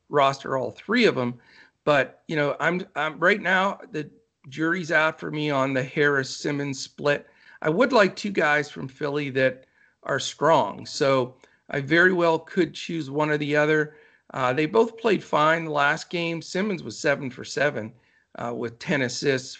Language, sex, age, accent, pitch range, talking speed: English, male, 50-69, American, 135-175 Hz, 180 wpm